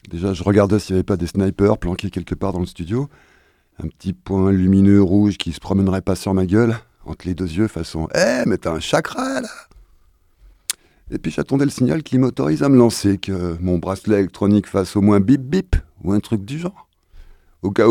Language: French